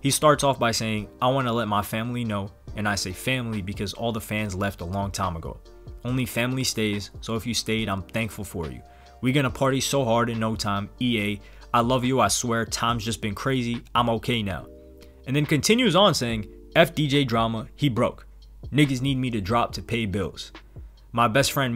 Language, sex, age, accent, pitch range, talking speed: English, male, 20-39, American, 105-130 Hz, 210 wpm